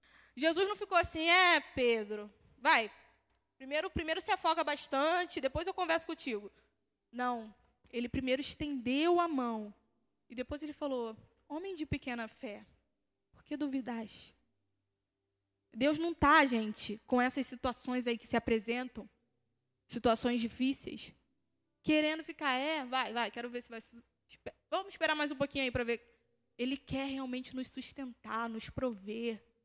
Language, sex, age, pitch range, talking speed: Portuguese, female, 20-39, 235-345 Hz, 140 wpm